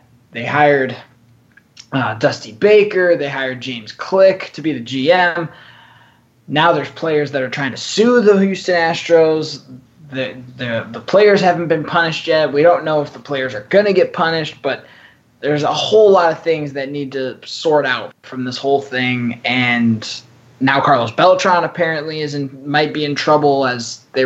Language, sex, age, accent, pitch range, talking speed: English, male, 20-39, American, 125-160 Hz, 175 wpm